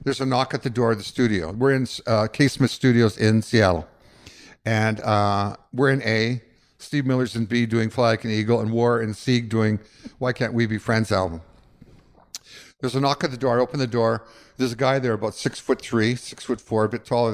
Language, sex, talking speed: English, male, 230 wpm